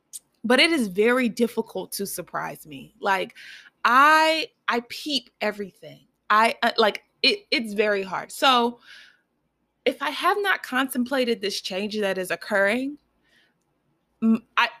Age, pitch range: 20-39, 195-240 Hz